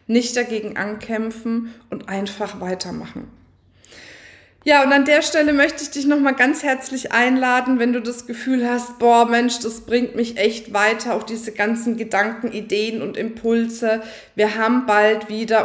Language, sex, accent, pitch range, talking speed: German, female, German, 200-235 Hz, 155 wpm